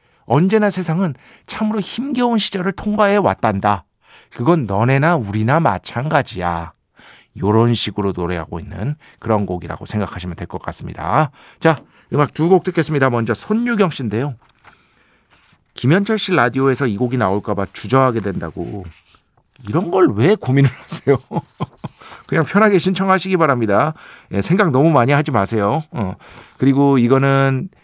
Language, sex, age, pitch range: Korean, male, 50-69, 105-165 Hz